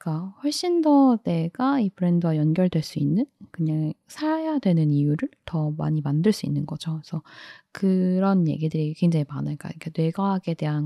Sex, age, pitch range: female, 10-29, 155-205 Hz